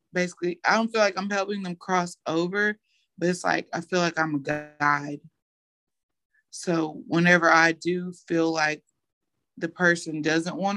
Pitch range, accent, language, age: 150-175 Hz, American, English, 30-49